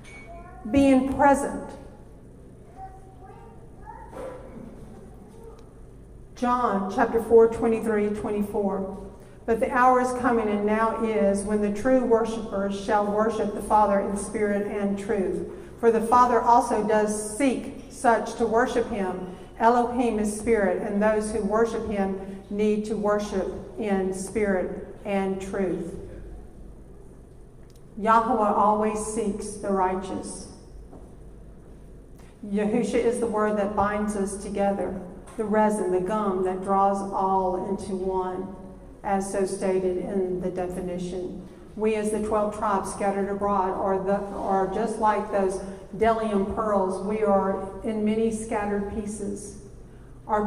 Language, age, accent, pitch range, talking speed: English, 50-69, American, 195-225 Hz, 120 wpm